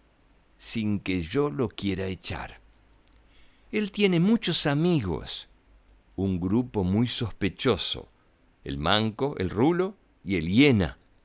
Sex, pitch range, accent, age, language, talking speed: male, 85-120 Hz, Argentinian, 60-79, Spanish, 110 wpm